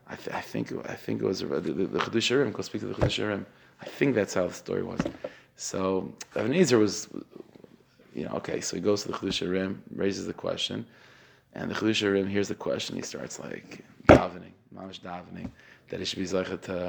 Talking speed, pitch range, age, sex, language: 205 wpm, 95-115 Hz, 30-49, male, English